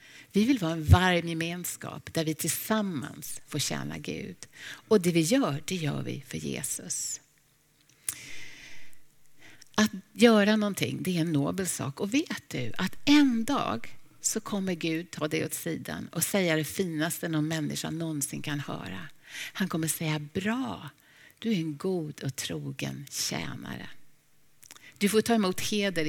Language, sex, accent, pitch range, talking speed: Swedish, female, native, 150-200 Hz, 155 wpm